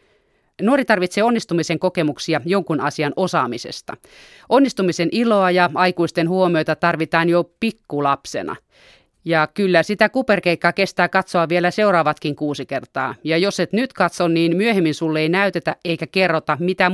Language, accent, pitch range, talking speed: Finnish, native, 155-195 Hz, 135 wpm